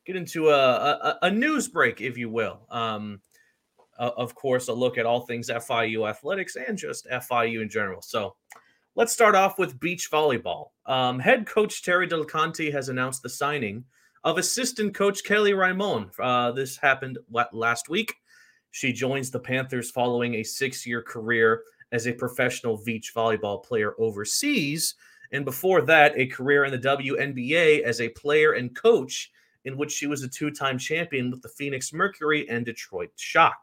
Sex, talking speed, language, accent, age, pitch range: male, 165 wpm, English, American, 30-49, 115-170 Hz